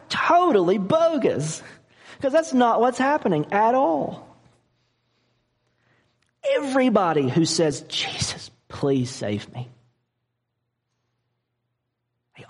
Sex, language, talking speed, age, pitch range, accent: male, English, 80 wpm, 40-59, 120-190 Hz, American